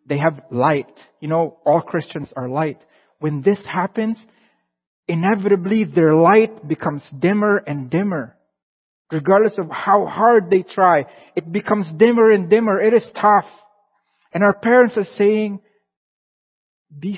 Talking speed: 135 wpm